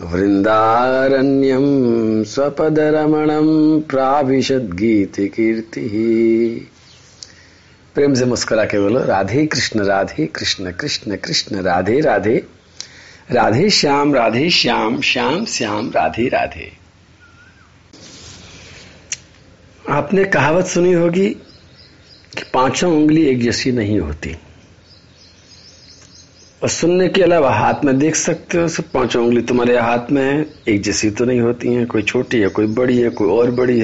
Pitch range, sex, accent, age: 100-150 Hz, male, native, 50-69